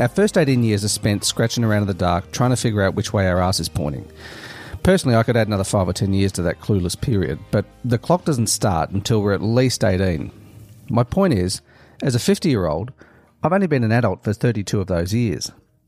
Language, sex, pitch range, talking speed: English, male, 100-130 Hz, 225 wpm